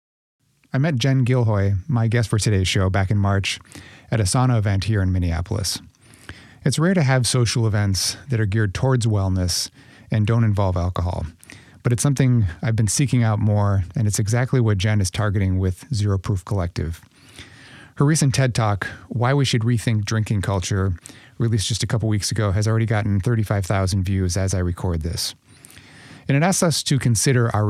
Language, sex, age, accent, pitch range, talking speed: English, male, 30-49, American, 100-125 Hz, 185 wpm